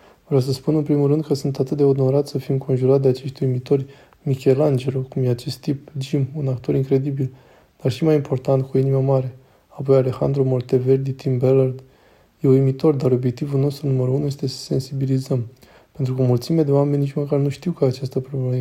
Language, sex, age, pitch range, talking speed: Romanian, male, 20-39, 130-145 Hz, 195 wpm